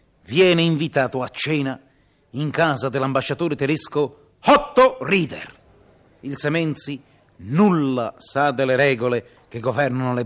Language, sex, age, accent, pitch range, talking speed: Italian, male, 40-59, native, 125-165 Hz, 110 wpm